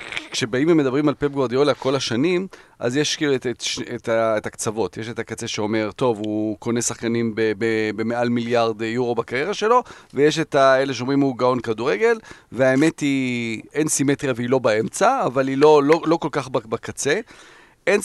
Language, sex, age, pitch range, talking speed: Hebrew, male, 40-59, 115-160 Hz, 180 wpm